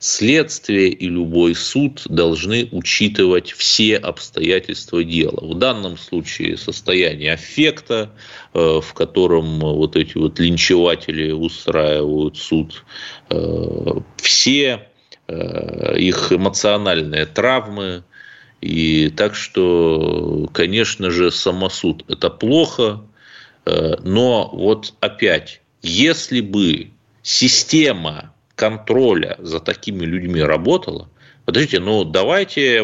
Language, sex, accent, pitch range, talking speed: Russian, male, native, 85-140 Hz, 90 wpm